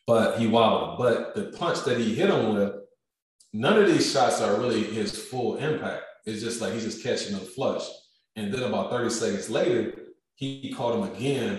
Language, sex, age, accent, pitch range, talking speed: English, male, 20-39, American, 100-120 Hz, 195 wpm